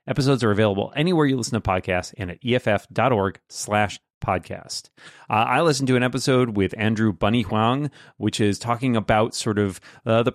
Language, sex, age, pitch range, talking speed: English, male, 30-49, 100-135 Hz, 180 wpm